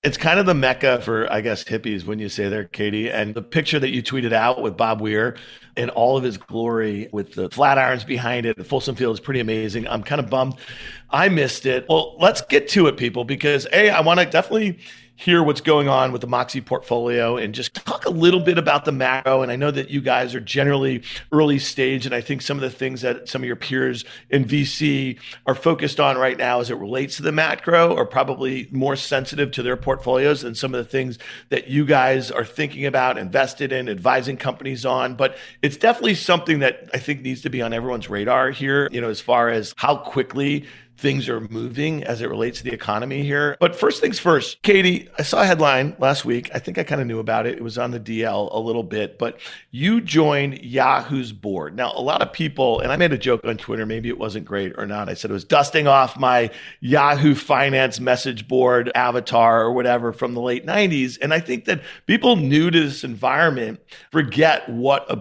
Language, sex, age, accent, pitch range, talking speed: English, male, 40-59, American, 120-145 Hz, 225 wpm